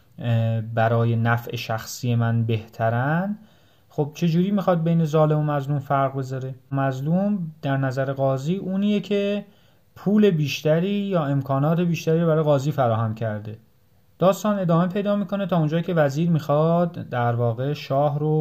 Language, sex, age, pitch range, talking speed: Persian, male, 30-49, 120-165 Hz, 135 wpm